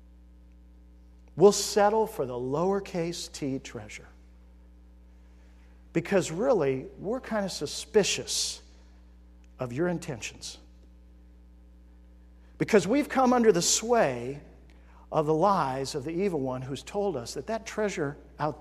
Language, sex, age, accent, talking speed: English, male, 50-69, American, 115 wpm